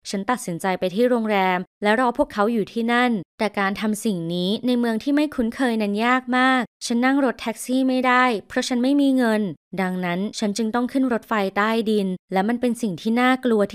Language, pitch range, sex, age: Thai, 205-260 Hz, female, 20-39